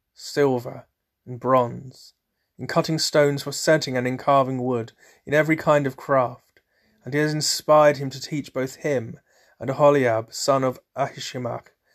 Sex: male